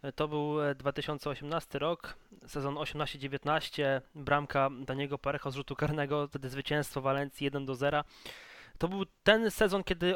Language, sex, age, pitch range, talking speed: Polish, male, 20-39, 135-150 Hz, 125 wpm